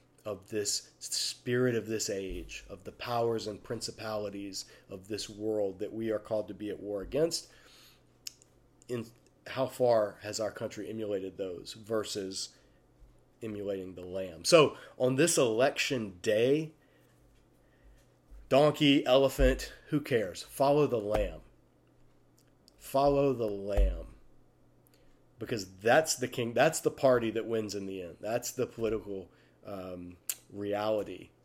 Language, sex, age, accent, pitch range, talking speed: English, male, 40-59, American, 105-135 Hz, 130 wpm